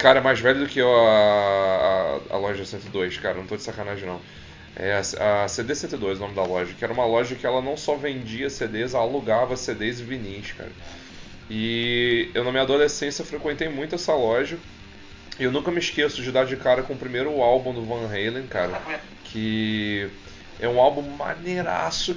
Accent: Brazilian